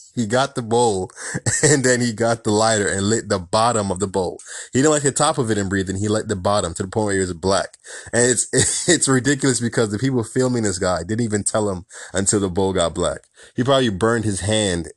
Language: English